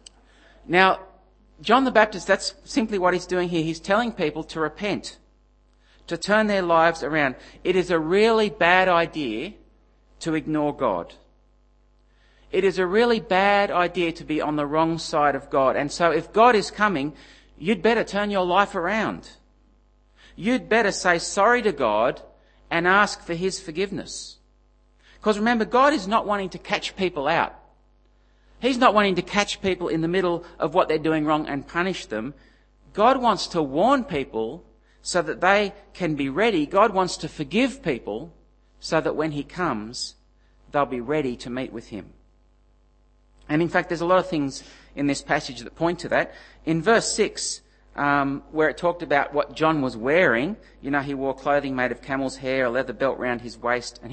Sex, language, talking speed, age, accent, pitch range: male, English, 180 wpm, 40-59, Australian, 140-200 Hz